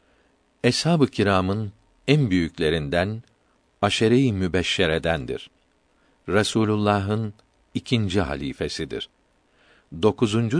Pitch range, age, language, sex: 95-120 Hz, 60-79, Turkish, male